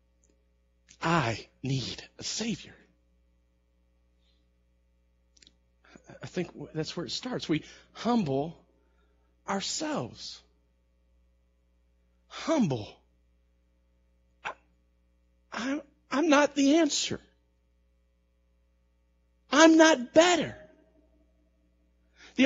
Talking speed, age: 60 wpm, 50-69